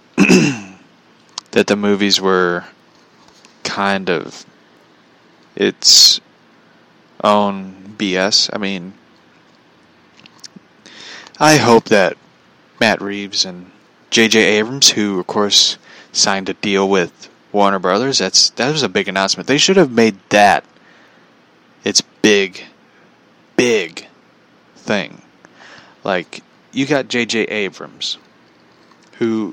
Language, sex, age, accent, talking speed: English, male, 20-39, American, 100 wpm